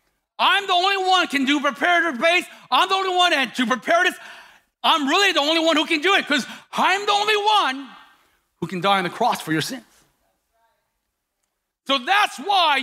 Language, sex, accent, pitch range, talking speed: English, male, American, 280-365 Hz, 190 wpm